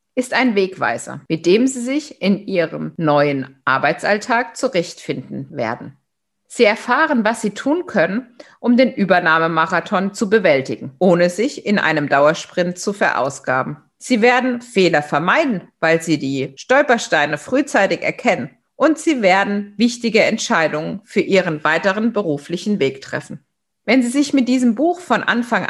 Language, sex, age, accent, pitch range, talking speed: German, female, 50-69, German, 170-260 Hz, 140 wpm